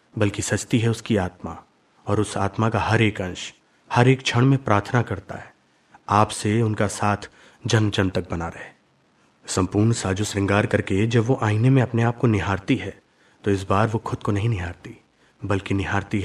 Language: Hindi